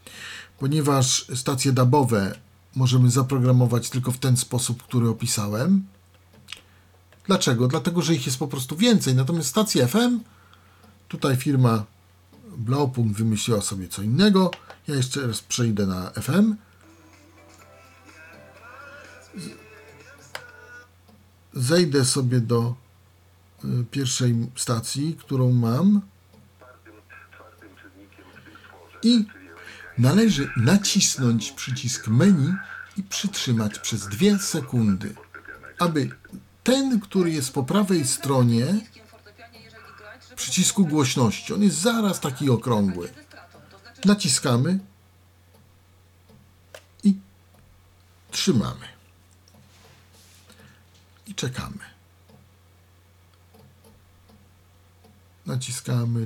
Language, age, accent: Polish, 50-69, native